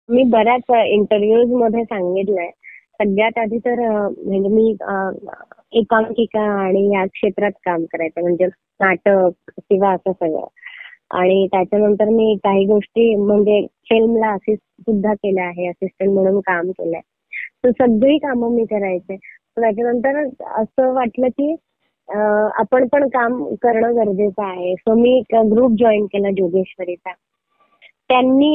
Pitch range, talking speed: 195-240 Hz, 125 wpm